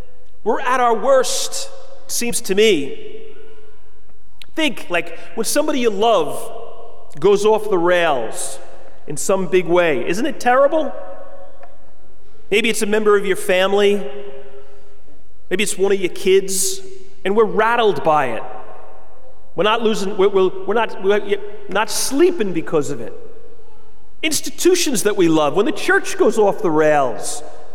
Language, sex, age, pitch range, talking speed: English, male, 40-59, 190-310 Hz, 145 wpm